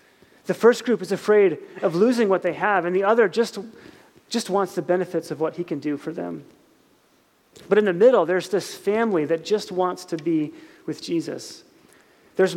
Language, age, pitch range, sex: English, 30-49, 165-210 Hz, male